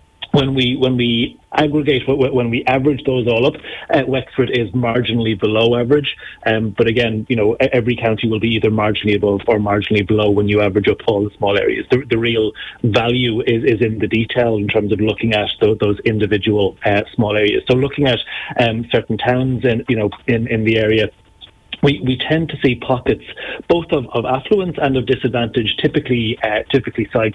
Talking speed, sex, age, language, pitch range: 195 wpm, male, 30-49, English, 110-125 Hz